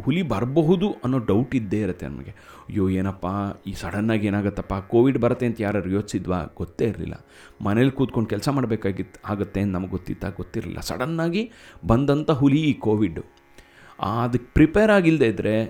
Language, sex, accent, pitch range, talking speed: Kannada, male, native, 100-140 Hz, 140 wpm